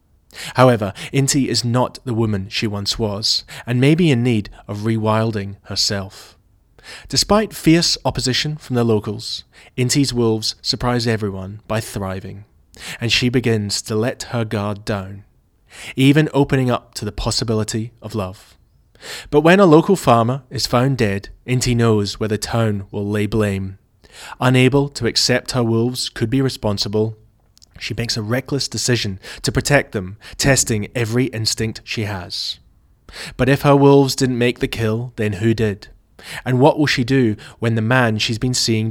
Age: 20-39